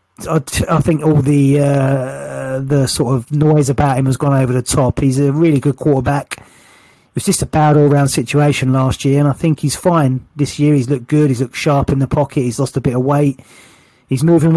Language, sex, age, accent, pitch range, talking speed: English, male, 30-49, British, 130-155 Hz, 225 wpm